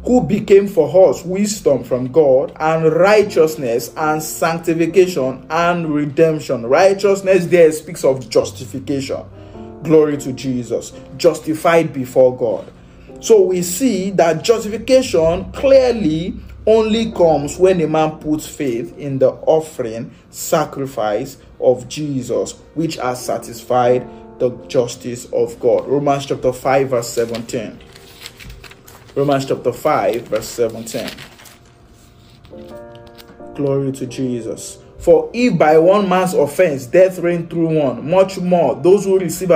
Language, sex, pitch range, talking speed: English, male, 130-185 Hz, 120 wpm